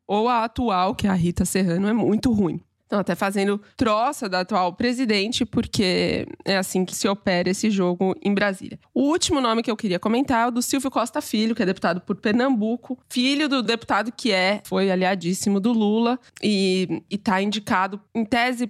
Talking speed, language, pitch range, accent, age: 195 wpm, Portuguese, 190-235 Hz, Brazilian, 20-39